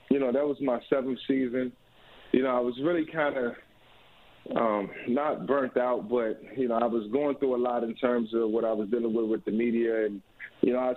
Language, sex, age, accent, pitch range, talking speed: English, male, 30-49, American, 110-135 Hz, 225 wpm